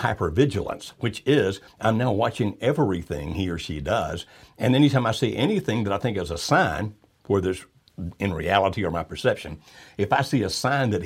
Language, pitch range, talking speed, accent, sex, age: English, 95-125 Hz, 195 wpm, American, male, 60-79